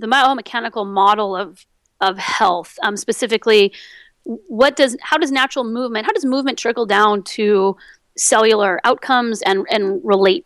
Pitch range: 200-260 Hz